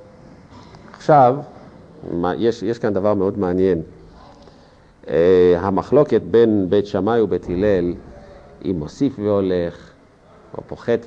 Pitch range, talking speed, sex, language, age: 95-145 Hz, 105 wpm, male, Hebrew, 50-69